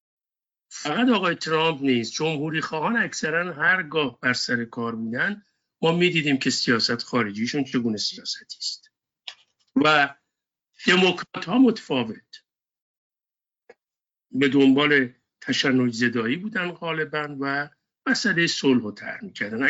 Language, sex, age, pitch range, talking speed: Persian, male, 50-69, 130-180 Hz, 100 wpm